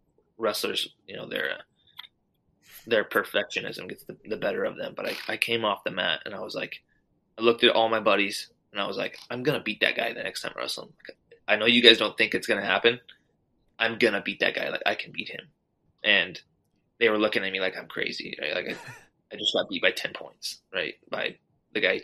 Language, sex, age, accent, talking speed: English, male, 20-39, American, 230 wpm